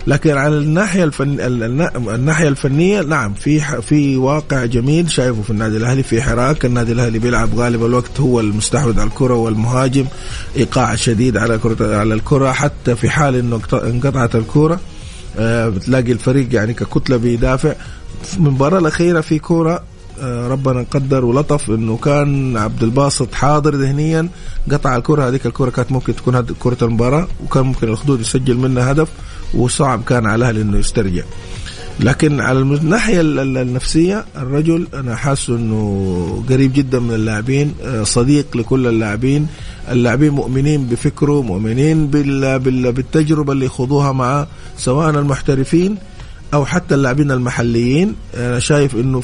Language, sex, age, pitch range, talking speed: English, male, 30-49, 115-145 Hz, 135 wpm